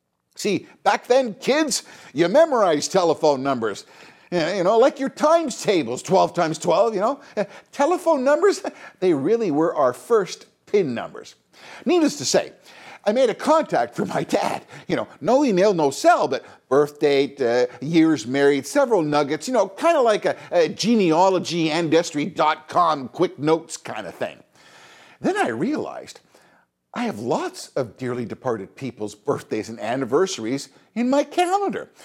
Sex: male